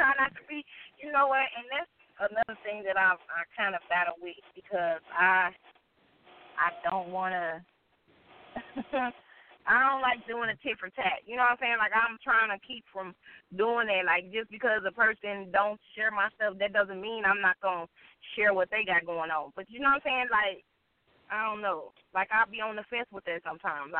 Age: 20-39